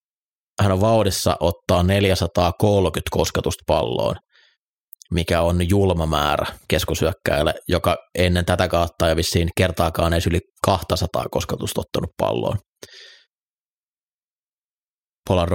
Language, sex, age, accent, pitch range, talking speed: Finnish, male, 30-49, native, 85-95 Hz, 95 wpm